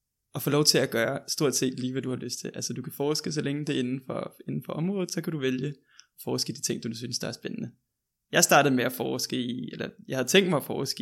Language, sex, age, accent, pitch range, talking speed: Danish, male, 20-39, native, 125-150 Hz, 295 wpm